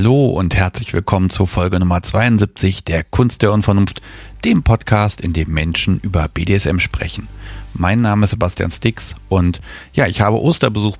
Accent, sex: German, male